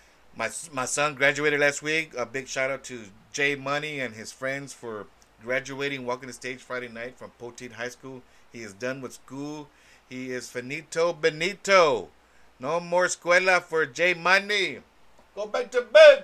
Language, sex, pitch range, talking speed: English, male, 130-170 Hz, 165 wpm